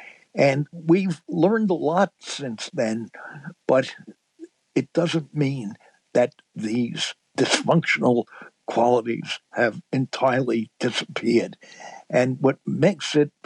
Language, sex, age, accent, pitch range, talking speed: English, male, 60-79, American, 120-165 Hz, 100 wpm